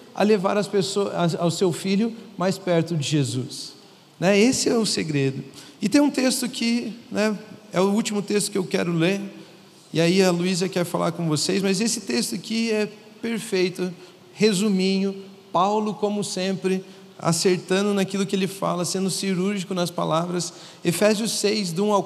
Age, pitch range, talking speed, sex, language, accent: 40-59, 175-215 Hz, 170 wpm, male, Portuguese, Brazilian